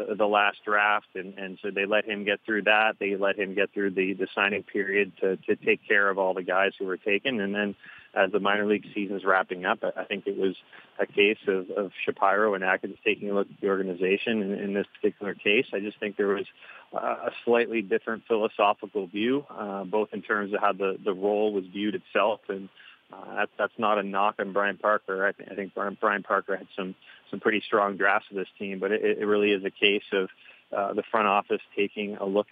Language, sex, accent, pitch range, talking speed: English, male, American, 100-105 Hz, 235 wpm